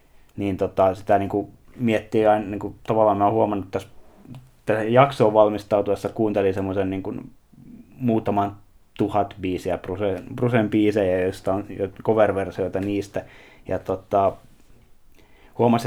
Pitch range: 90-105 Hz